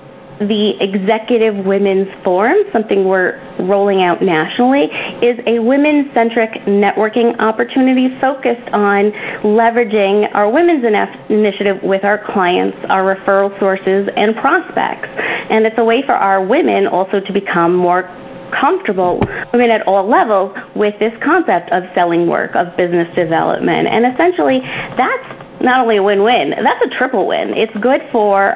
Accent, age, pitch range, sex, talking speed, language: American, 40-59, 195-235 Hz, female, 140 wpm, English